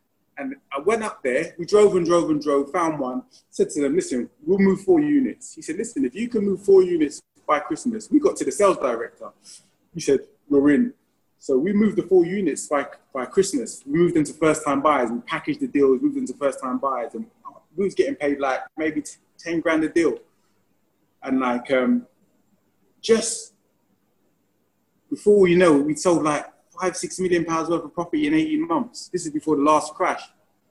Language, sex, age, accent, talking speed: English, male, 30-49, British, 195 wpm